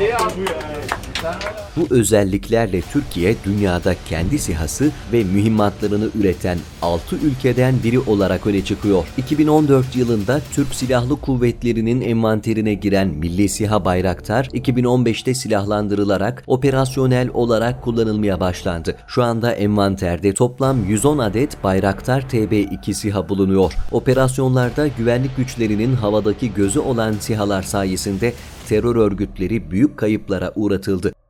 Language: Turkish